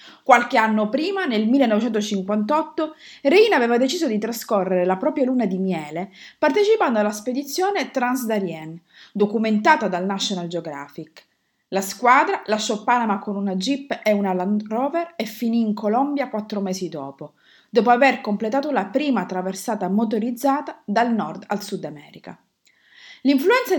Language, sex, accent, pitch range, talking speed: Italian, female, native, 195-270 Hz, 135 wpm